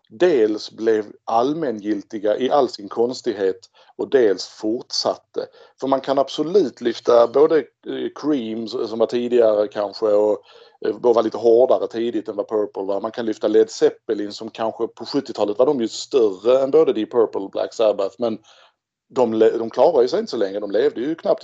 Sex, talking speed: male, 170 wpm